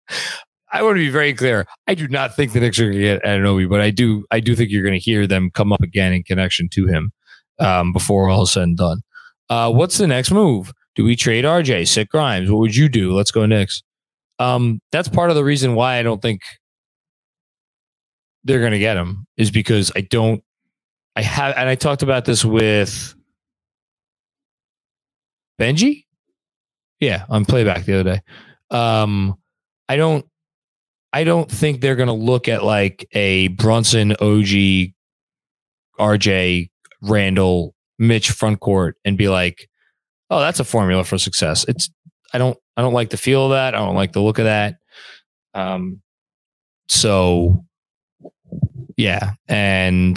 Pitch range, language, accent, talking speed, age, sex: 100-130 Hz, English, American, 170 wpm, 20-39, male